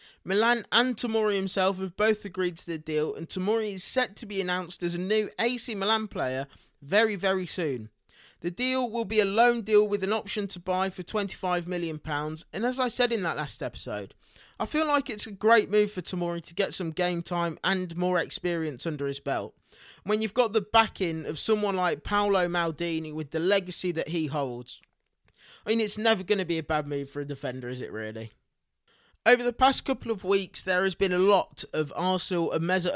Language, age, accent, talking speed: English, 20-39, British, 215 wpm